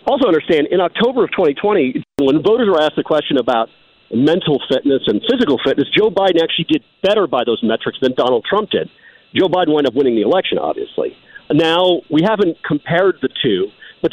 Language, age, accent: English, 50-69, American